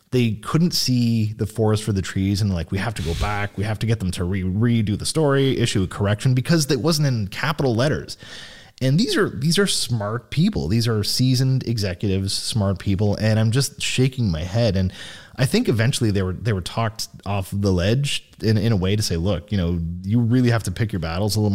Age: 30-49